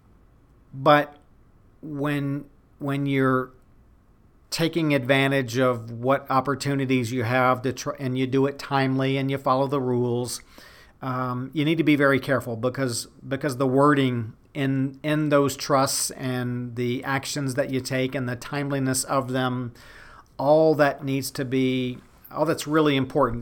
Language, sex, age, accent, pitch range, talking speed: English, male, 40-59, American, 125-140 Hz, 150 wpm